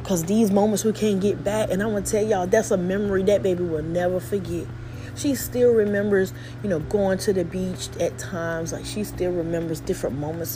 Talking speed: 215 wpm